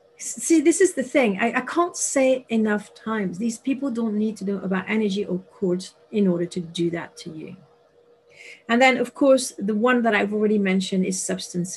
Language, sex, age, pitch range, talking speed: English, female, 40-59, 195-245 Hz, 205 wpm